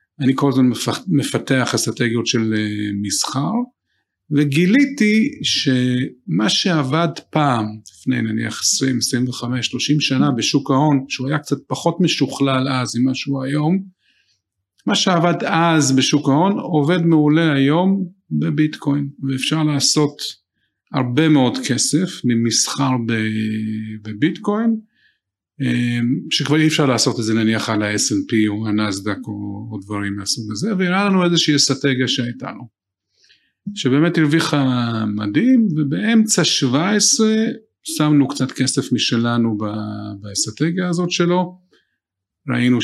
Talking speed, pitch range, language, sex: 110 wpm, 115-165 Hz, Hebrew, male